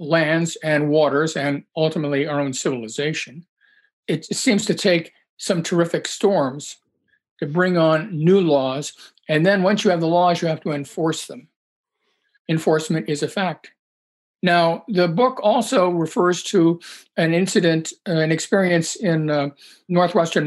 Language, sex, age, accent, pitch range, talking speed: English, male, 50-69, American, 155-195 Hz, 145 wpm